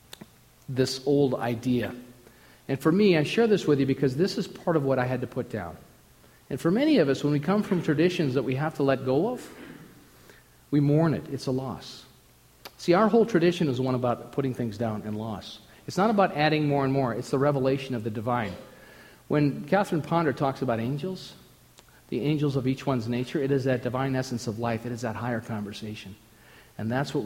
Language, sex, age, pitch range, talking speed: English, male, 50-69, 120-150 Hz, 215 wpm